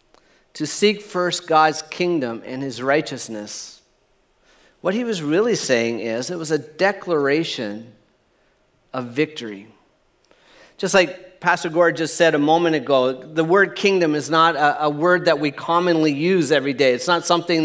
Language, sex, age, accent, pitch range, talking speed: English, male, 40-59, American, 150-190 Hz, 155 wpm